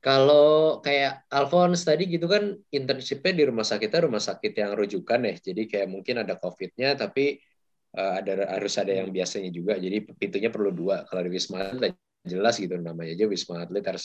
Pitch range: 95-140 Hz